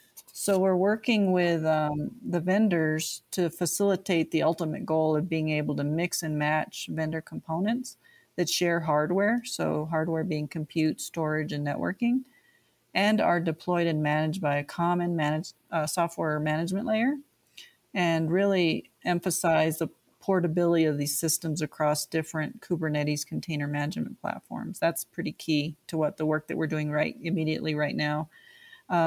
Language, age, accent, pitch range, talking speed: English, 40-59, American, 155-190 Hz, 145 wpm